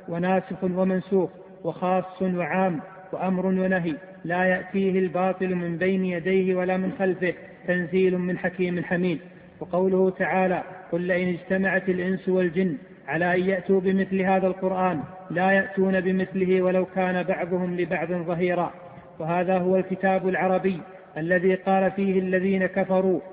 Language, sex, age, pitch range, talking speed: Arabic, male, 40-59, 180-190 Hz, 125 wpm